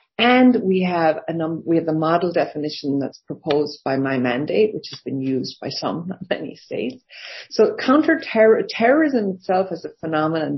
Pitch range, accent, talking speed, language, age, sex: 155-195 Hz, Irish, 175 wpm, English, 40-59, female